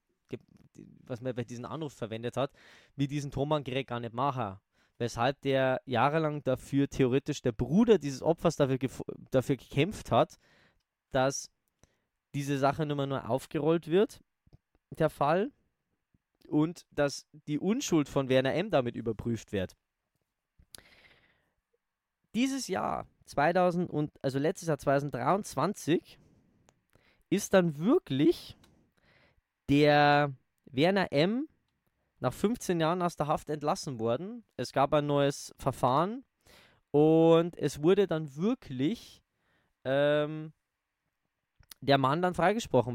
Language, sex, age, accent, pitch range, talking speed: German, male, 20-39, German, 135-170 Hz, 115 wpm